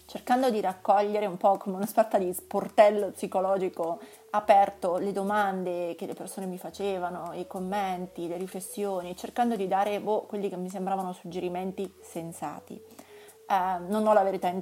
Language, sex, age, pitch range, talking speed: Italian, female, 30-49, 185-225 Hz, 160 wpm